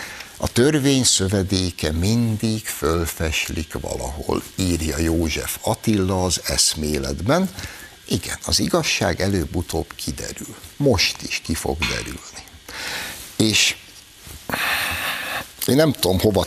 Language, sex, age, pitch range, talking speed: Hungarian, male, 60-79, 85-110 Hz, 95 wpm